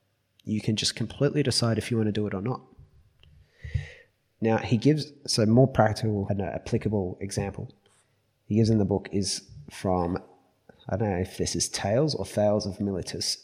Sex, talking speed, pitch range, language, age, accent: male, 180 wpm, 100-120 Hz, English, 30-49, Australian